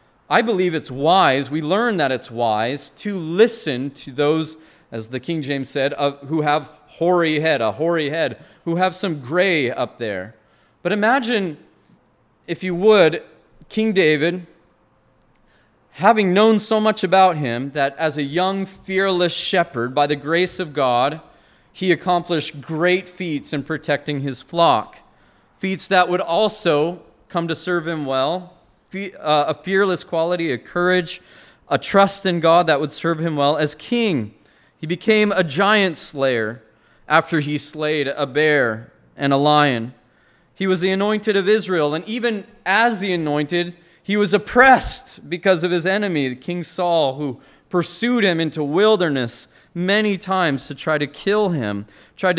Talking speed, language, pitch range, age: 155 wpm, English, 145-185 Hz, 30-49